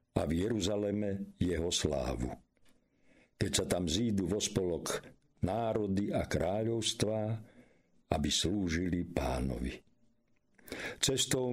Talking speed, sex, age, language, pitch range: 95 wpm, male, 50-69, Slovak, 85-115 Hz